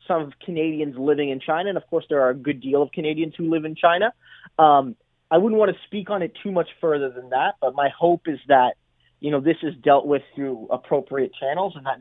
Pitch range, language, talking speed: 140-170 Hz, English, 240 wpm